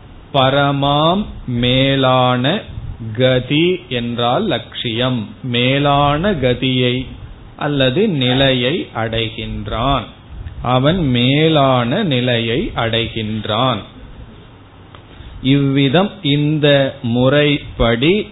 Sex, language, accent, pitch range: male, Tamil, native, 115-140 Hz